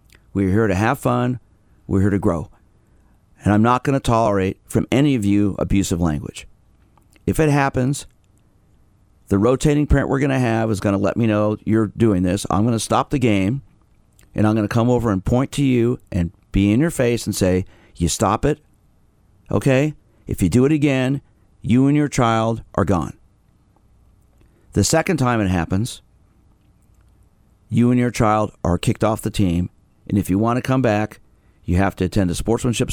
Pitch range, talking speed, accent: 95-125 Hz, 180 wpm, American